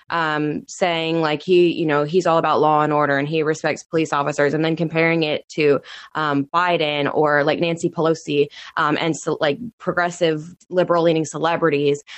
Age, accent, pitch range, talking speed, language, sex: 20-39, American, 155-185 Hz, 170 wpm, English, female